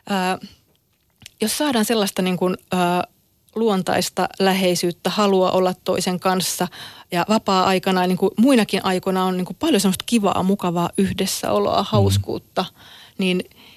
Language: Finnish